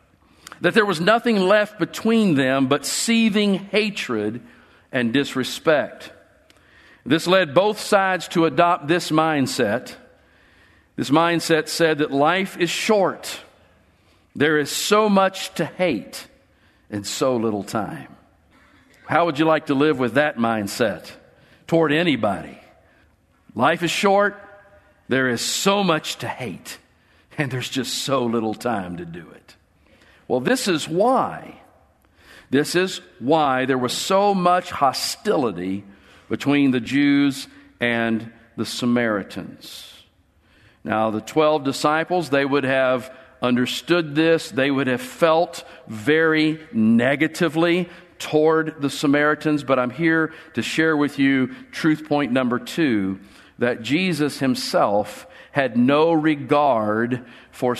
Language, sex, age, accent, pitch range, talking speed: English, male, 50-69, American, 120-170 Hz, 125 wpm